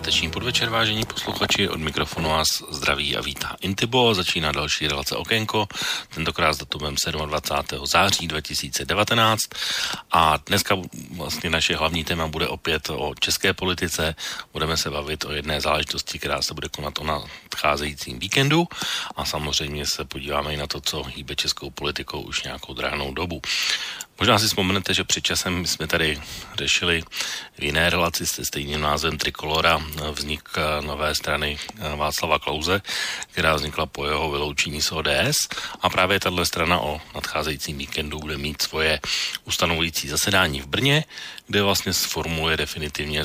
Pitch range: 75-90 Hz